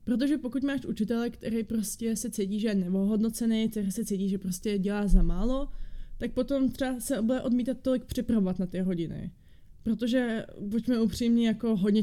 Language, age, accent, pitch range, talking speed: Czech, 20-39, native, 200-235 Hz, 175 wpm